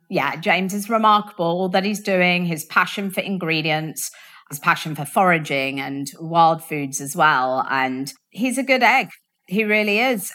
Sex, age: female, 30-49